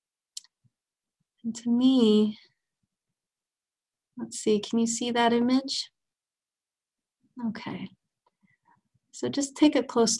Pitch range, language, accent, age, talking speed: 190-220 Hz, English, American, 30-49, 95 wpm